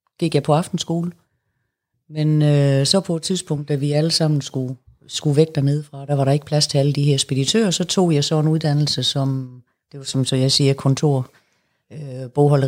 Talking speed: 210 wpm